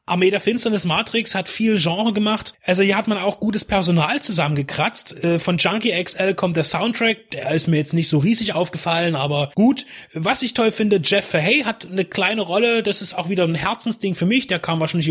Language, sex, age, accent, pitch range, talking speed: German, male, 30-49, German, 160-200 Hz, 210 wpm